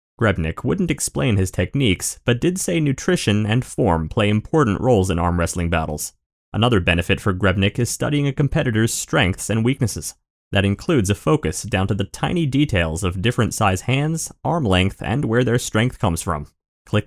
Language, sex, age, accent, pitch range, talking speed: English, male, 30-49, American, 95-145 Hz, 180 wpm